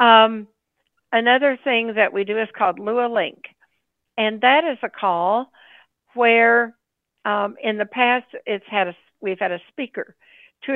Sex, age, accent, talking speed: female, 60-79, American, 155 wpm